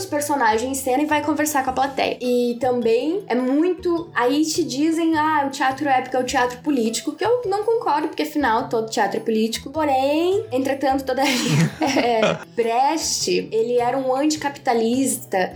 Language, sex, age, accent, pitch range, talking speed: Portuguese, female, 10-29, Brazilian, 225-305 Hz, 165 wpm